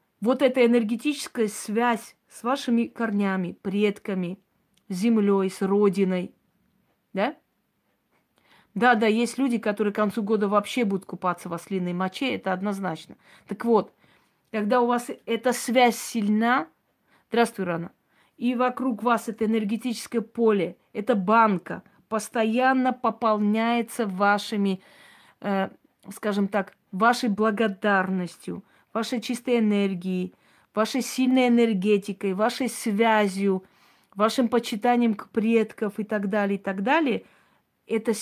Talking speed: 115 wpm